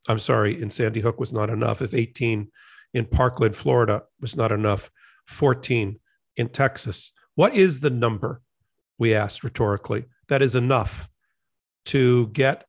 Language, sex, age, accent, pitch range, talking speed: English, male, 50-69, American, 110-135 Hz, 145 wpm